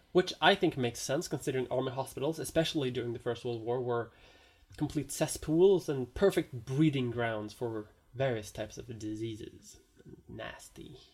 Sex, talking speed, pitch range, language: male, 145 wpm, 125-185 Hz, English